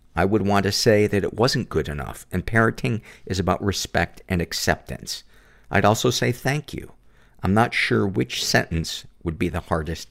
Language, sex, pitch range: English, male, 85-105 Hz